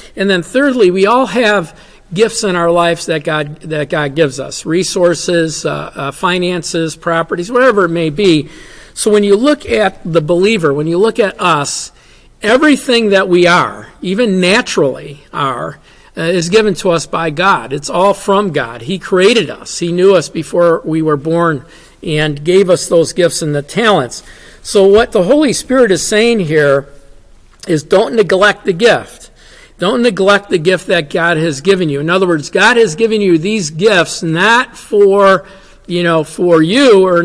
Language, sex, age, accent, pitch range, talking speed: English, male, 50-69, American, 165-200 Hz, 180 wpm